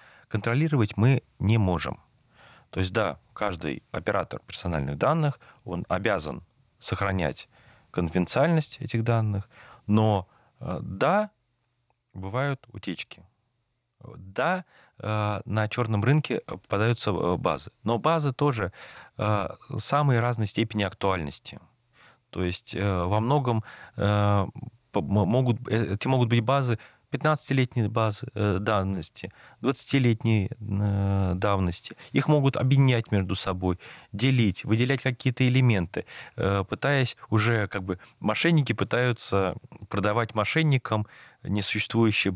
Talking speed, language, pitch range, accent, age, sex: 95 wpm, Russian, 100-125 Hz, native, 30-49, male